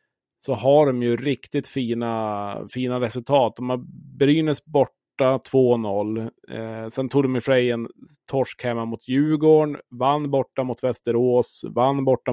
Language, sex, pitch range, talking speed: Swedish, male, 115-130 Hz, 140 wpm